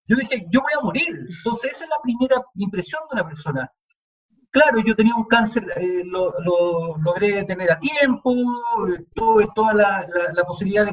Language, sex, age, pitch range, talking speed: Spanish, male, 50-69, 190-255 Hz, 185 wpm